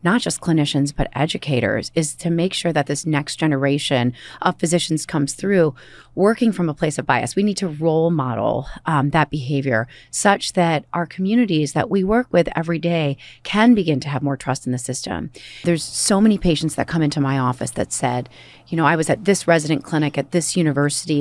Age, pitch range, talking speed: 30-49, 145-185 Hz, 205 wpm